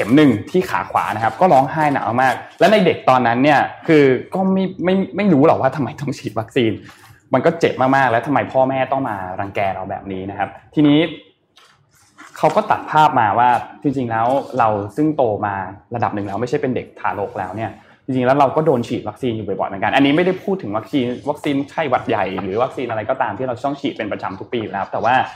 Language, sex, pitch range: Thai, male, 110-140 Hz